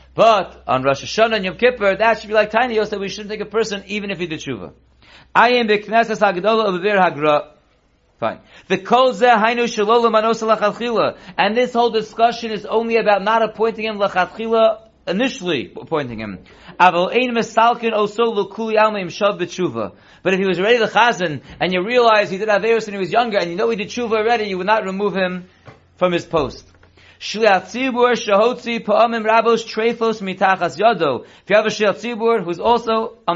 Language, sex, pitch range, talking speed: English, male, 185-225 Hz, 140 wpm